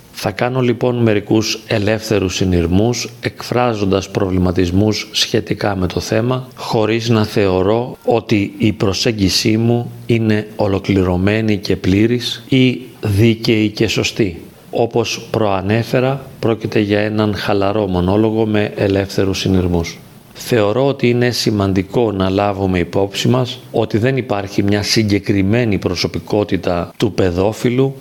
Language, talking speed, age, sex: Greek, 115 wpm, 40-59, male